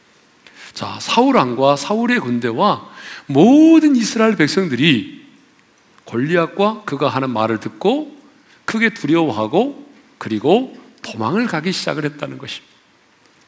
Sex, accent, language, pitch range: male, native, Korean, 135-220 Hz